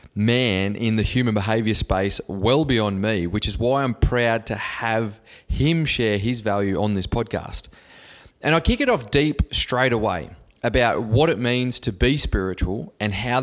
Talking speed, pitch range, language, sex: 180 wpm, 100-125 Hz, English, male